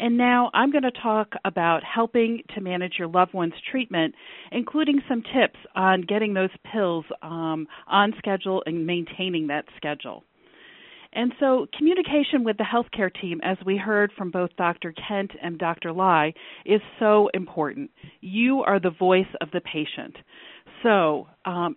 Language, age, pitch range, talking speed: English, 40-59, 170-220 Hz, 155 wpm